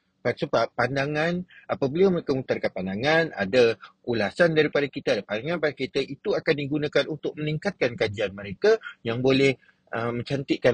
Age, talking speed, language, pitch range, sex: 30-49, 145 wpm, Malay, 120-170 Hz, male